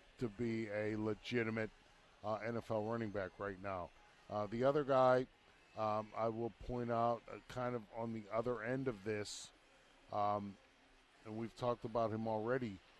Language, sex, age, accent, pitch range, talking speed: English, male, 50-69, American, 110-125 Hz, 160 wpm